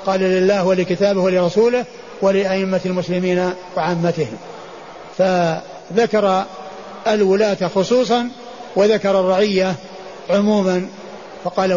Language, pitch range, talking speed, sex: Arabic, 185-215 Hz, 70 wpm, male